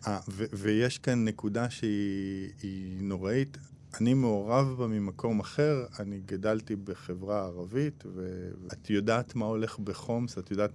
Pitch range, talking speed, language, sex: 105-130 Hz, 130 wpm, English, male